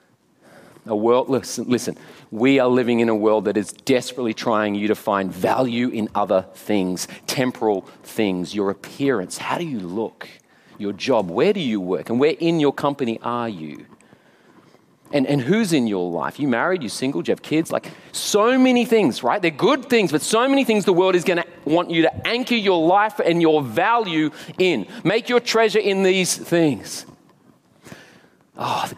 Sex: male